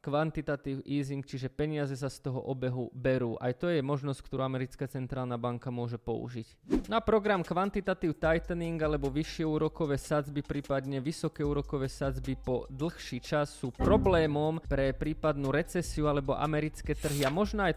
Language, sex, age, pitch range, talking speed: Slovak, male, 20-39, 135-155 Hz, 155 wpm